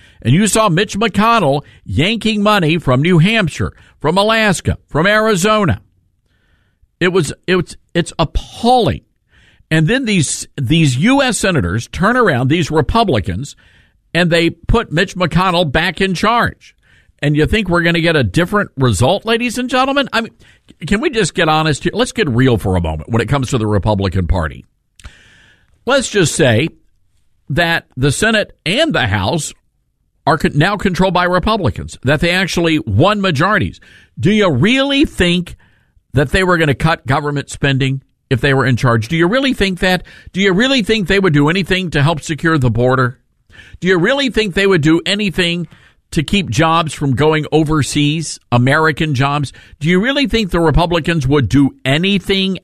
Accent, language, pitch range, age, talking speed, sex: American, English, 135-190 Hz, 50-69, 175 wpm, male